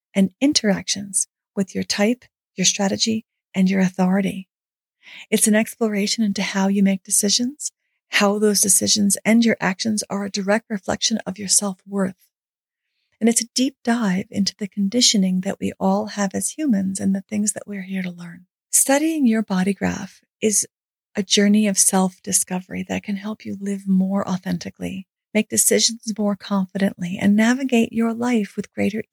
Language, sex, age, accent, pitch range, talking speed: English, female, 40-59, American, 195-230 Hz, 165 wpm